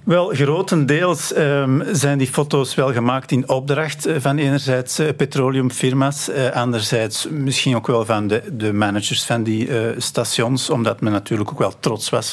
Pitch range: 115-145 Hz